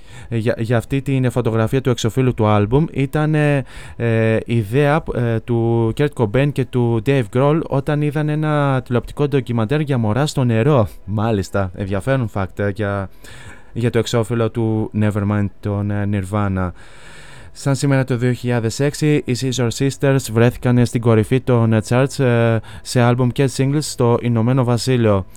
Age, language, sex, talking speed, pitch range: 20-39, Greek, male, 145 wpm, 115-135 Hz